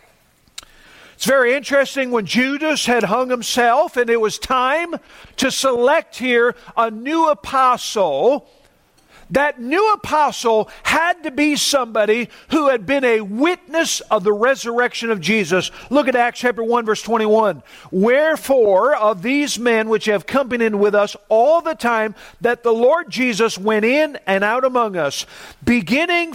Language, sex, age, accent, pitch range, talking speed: English, male, 50-69, American, 225-280 Hz, 150 wpm